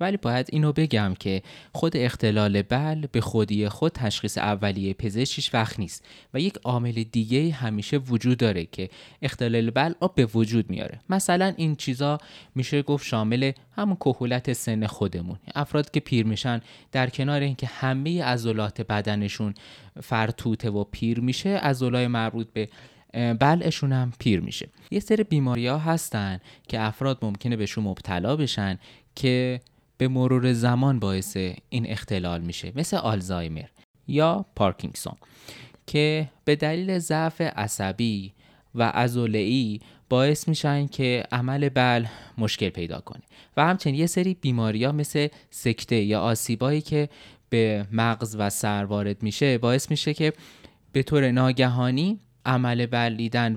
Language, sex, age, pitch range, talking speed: Persian, male, 20-39, 110-145 Hz, 140 wpm